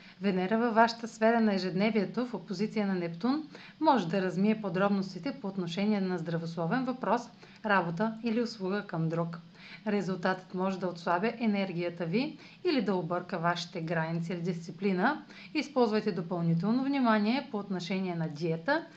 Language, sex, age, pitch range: Bulgarian, female, 30-49, 185-235 Hz